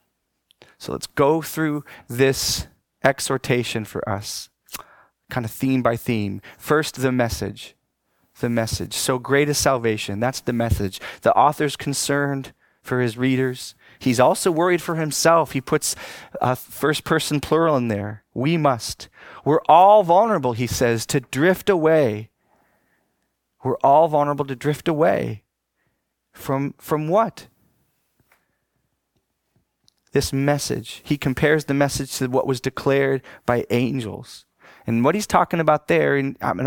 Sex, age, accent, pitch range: male, 30-49, American, 120-145 Hz